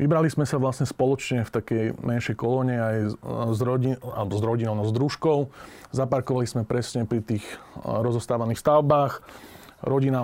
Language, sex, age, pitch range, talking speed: Slovak, male, 30-49, 115-135 Hz, 150 wpm